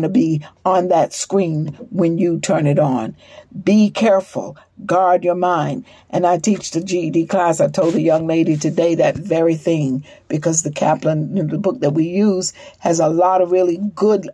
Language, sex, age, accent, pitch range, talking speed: English, female, 60-79, American, 160-200 Hz, 195 wpm